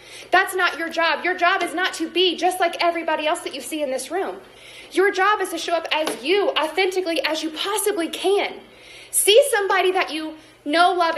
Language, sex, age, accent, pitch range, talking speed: English, female, 20-39, American, 310-385 Hz, 210 wpm